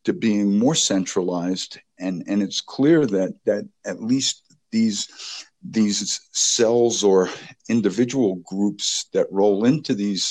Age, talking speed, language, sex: 50-69, 130 wpm, English, male